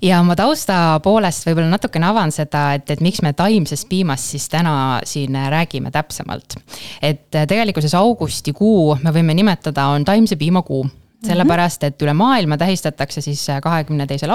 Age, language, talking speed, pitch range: 20-39, English, 155 wpm, 150-185 Hz